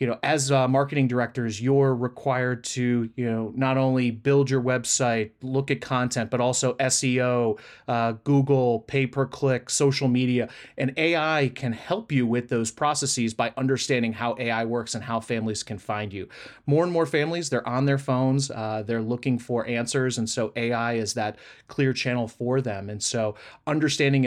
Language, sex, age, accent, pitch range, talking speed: English, male, 30-49, American, 115-135 Hz, 175 wpm